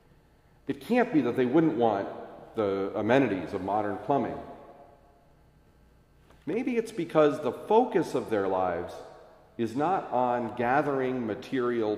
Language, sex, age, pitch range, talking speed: English, male, 40-59, 110-150 Hz, 125 wpm